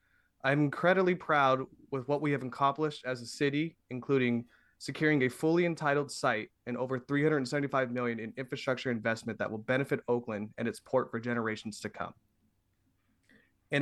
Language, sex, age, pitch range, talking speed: English, male, 20-39, 120-155 Hz, 155 wpm